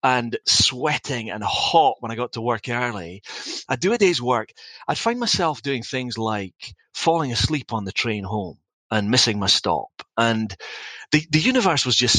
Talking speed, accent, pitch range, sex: 180 wpm, British, 110-140 Hz, male